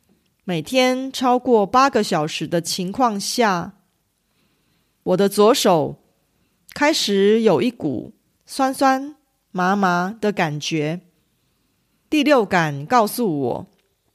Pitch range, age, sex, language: 180-250 Hz, 30-49, female, Korean